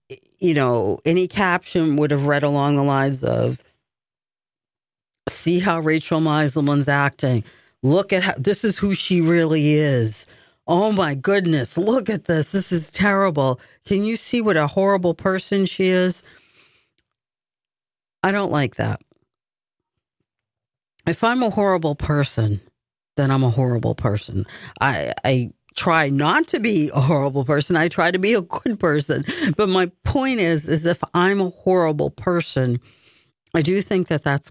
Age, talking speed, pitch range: 40-59, 155 wpm, 130-175 Hz